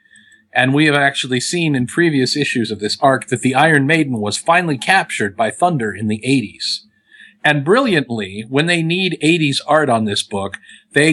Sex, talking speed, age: male, 185 wpm, 50-69